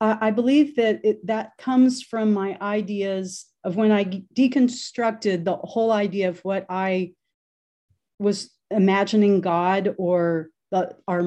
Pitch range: 180-215 Hz